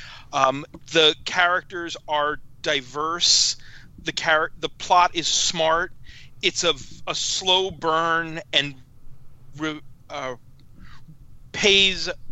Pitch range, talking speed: 130-175 Hz, 95 wpm